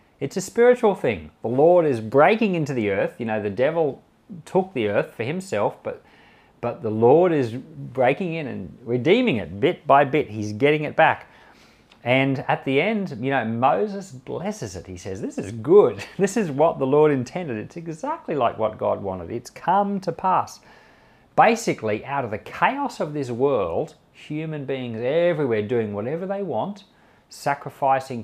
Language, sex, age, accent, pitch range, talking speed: English, male, 40-59, Australian, 110-165 Hz, 175 wpm